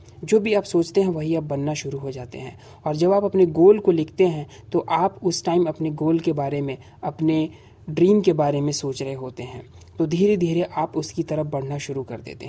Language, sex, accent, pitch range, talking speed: Hindi, male, native, 140-180 Hz, 230 wpm